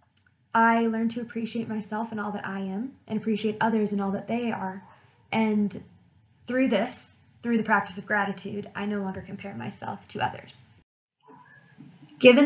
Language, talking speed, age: English, 165 wpm, 10-29